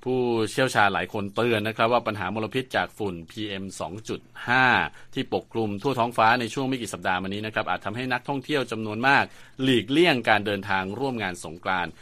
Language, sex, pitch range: Thai, male, 100-125 Hz